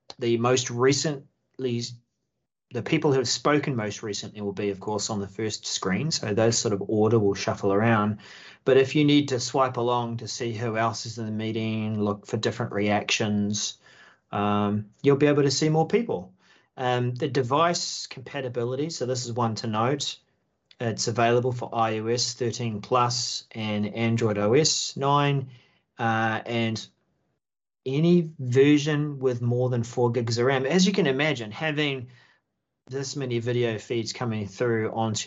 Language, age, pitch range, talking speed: English, 30-49, 110-135 Hz, 165 wpm